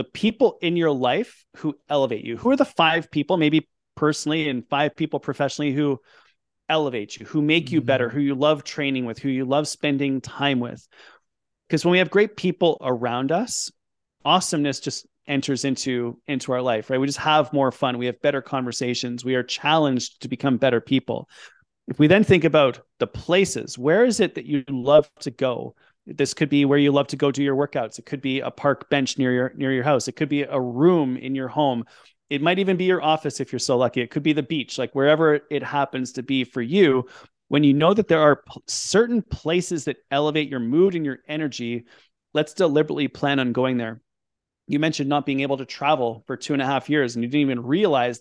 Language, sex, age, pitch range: English, male, 30-49, 130-155 Hz